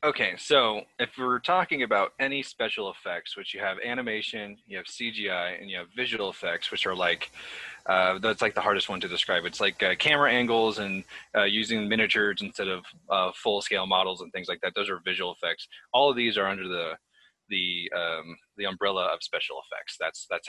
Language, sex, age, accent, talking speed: English, male, 20-39, American, 200 wpm